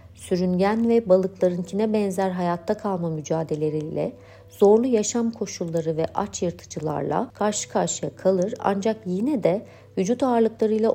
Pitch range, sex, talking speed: 175-225 Hz, female, 115 wpm